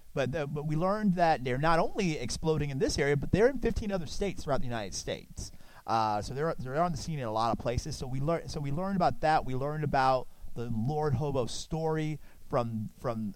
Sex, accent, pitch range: male, American, 120-155 Hz